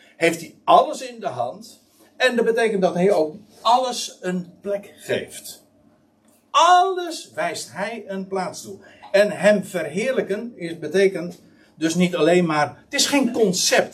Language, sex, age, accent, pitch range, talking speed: Dutch, male, 60-79, Dutch, 175-240 Hz, 150 wpm